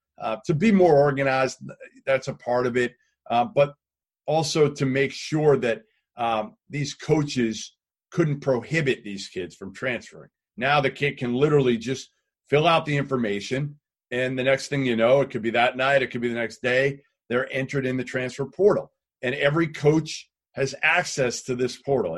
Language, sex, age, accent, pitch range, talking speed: English, male, 40-59, American, 125-185 Hz, 180 wpm